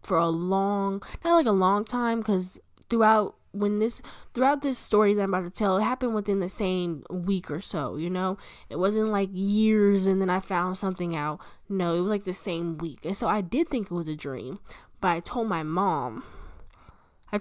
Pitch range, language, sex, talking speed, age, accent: 180-225 Hz, English, female, 205 wpm, 10-29, American